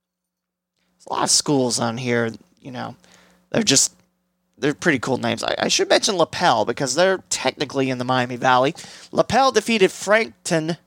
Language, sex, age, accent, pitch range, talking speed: English, male, 30-49, American, 125-180 Hz, 160 wpm